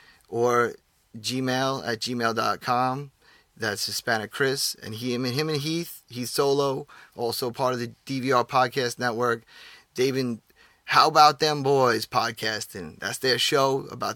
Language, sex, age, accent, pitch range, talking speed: English, male, 30-49, American, 115-125 Hz, 125 wpm